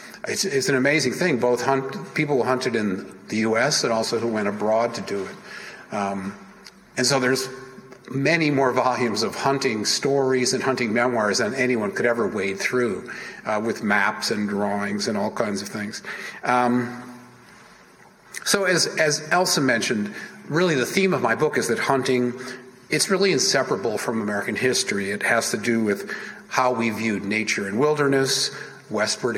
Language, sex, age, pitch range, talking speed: English, male, 50-69, 115-145 Hz, 170 wpm